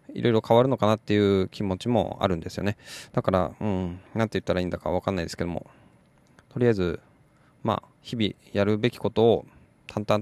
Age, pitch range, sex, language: 20-39, 95-120 Hz, male, Japanese